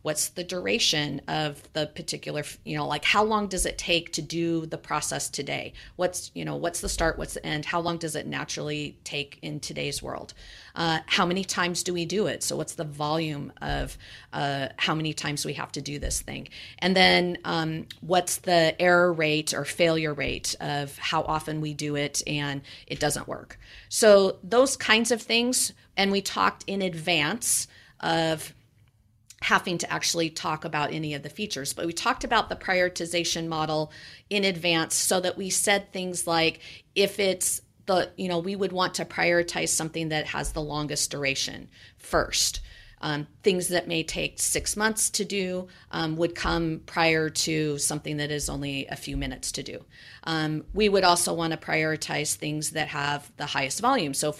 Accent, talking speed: American, 190 wpm